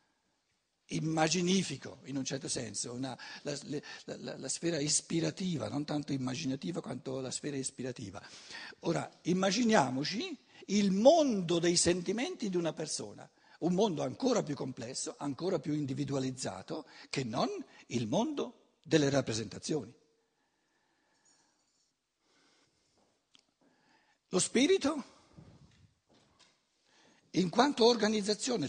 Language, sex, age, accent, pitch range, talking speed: Italian, male, 60-79, native, 145-210 Hz, 100 wpm